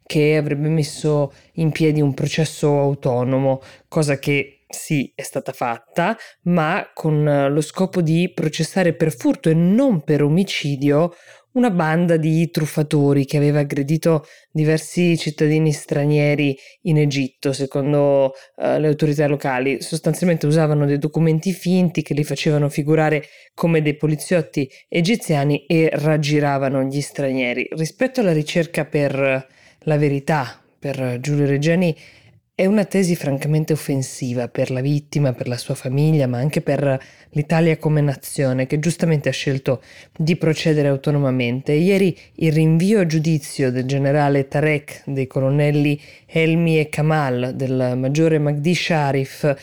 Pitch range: 140-160 Hz